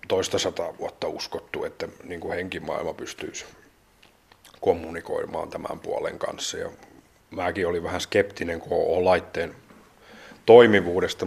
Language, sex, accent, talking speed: Finnish, male, native, 95 wpm